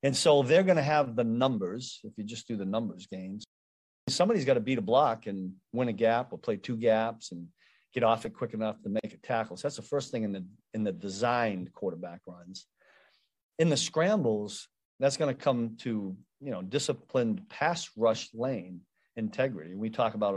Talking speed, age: 205 wpm, 40-59